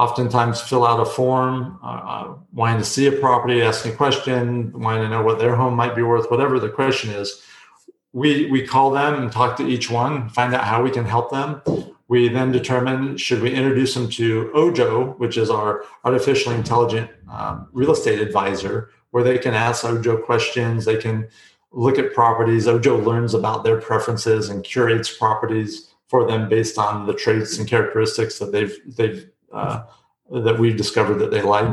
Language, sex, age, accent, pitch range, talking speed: English, male, 40-59, American, 110-130 Hz, 185 wpm